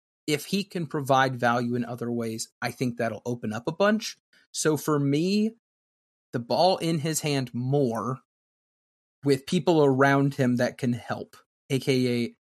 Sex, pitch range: male, 120-150 Hz